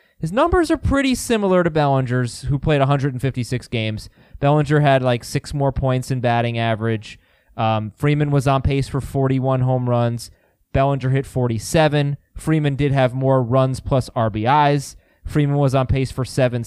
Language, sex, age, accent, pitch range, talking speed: English, male, 20-39, American, 130-185 Hz, 160 wpm